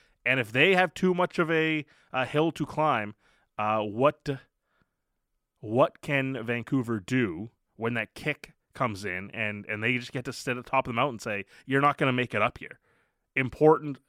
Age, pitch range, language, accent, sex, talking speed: 20-39, 110-140 Hz, English, American, male, 200 wpm